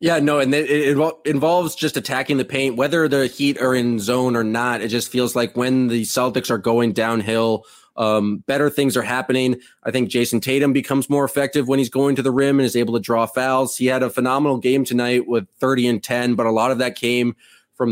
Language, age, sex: English, 20-39, male